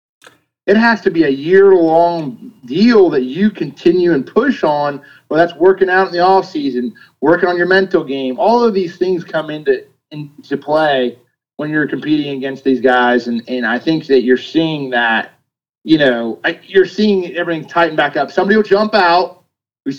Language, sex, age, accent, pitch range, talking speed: English, male, 30-49, American, 135-175 Hz, 185 wpm